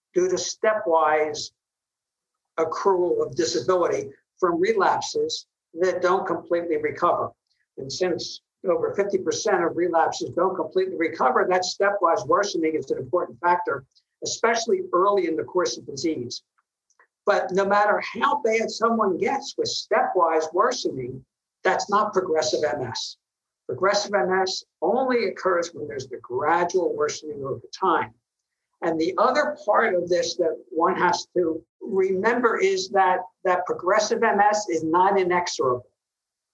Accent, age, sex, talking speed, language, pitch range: American, 60-79, male, 130 wpm, English, 165-215 Hz